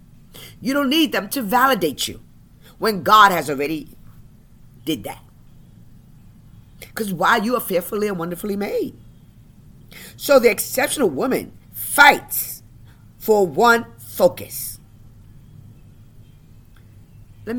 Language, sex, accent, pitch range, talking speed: English, female, American, 170-265 Hz, 100 wpm